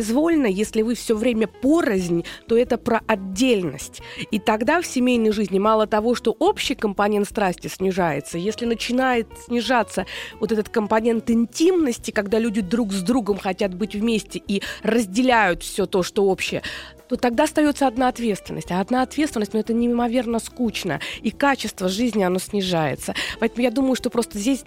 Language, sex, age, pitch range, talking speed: Russian, female, 20-39, 195-245 Hz, 160 wpm